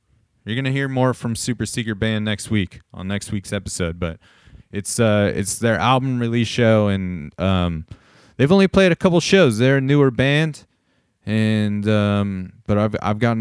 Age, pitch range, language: 30-49, 95-125 Hz, English